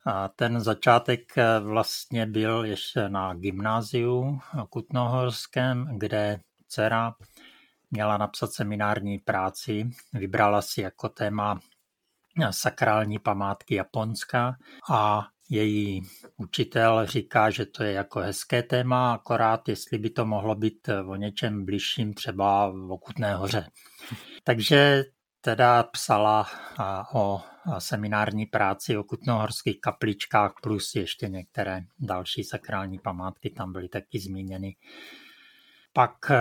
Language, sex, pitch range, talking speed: Czech, male, 100-120 Hz, 110 wpm